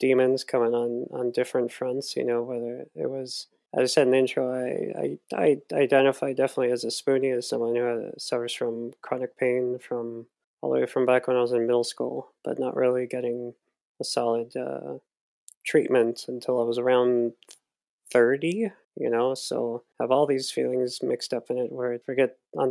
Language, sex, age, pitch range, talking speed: English, male, 20-39, 120-130 Hz, 190 wpm